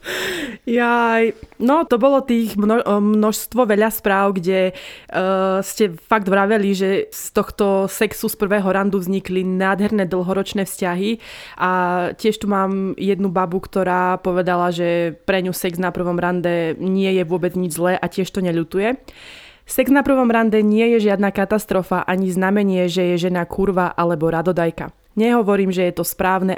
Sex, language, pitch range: female, Slovak, 175-205 Hz